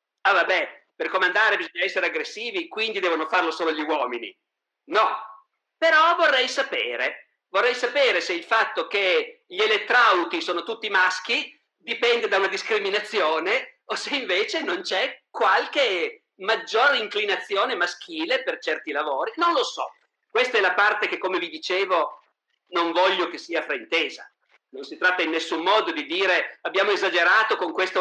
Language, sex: Italian, male